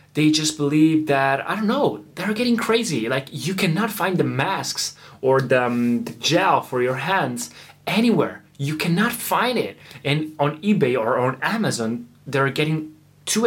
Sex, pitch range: male, 140-205 Hz